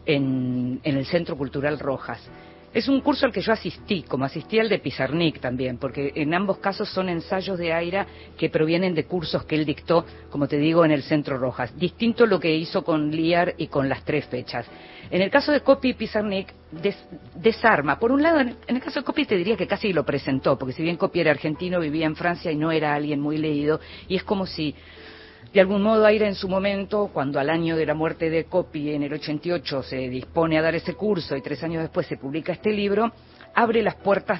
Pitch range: 145-190 Hz